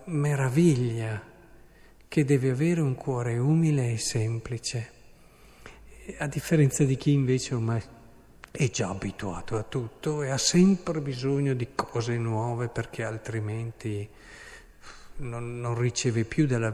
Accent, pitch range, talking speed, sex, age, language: native, 115-135 Hz, 120 wpm, male, 50-69, Italian